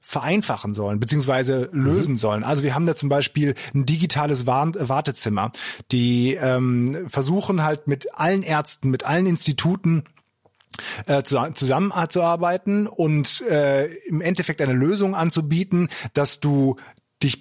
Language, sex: German, male